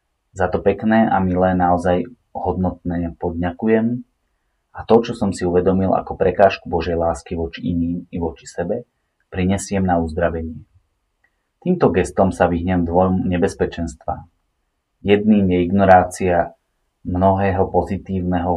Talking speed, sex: 120 wpm, male